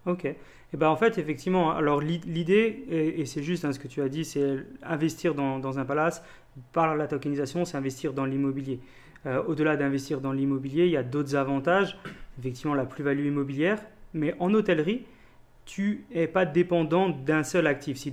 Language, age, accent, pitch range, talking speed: French, 30-49, French, 140-170 Hz, 185 wpm